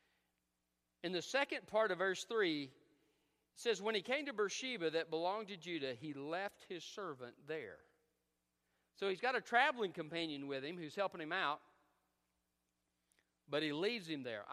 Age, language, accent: 50-69, English, American